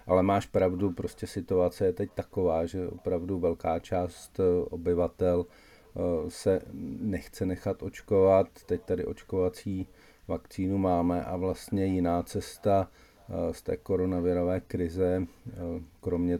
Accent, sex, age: native, male, 40-59